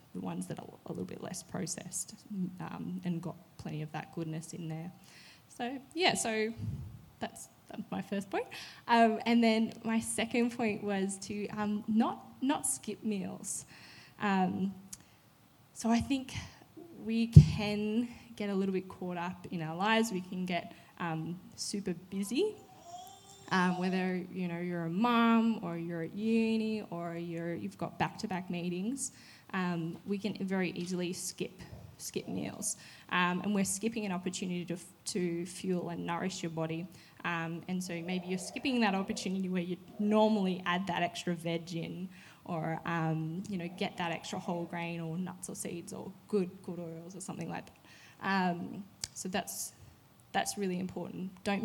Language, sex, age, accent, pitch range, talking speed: English, female, 10-29, Australian, 175-215 Hz, 165 wpm